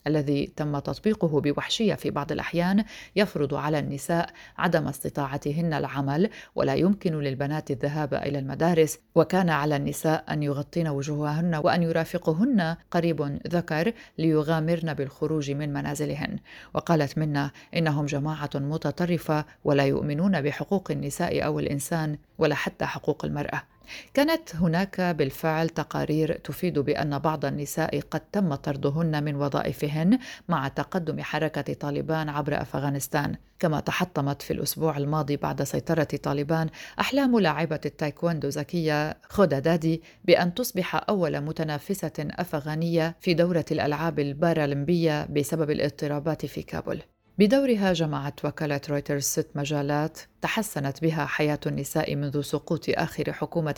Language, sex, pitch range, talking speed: Arabic, female, 145-170 Hz, 120 wpm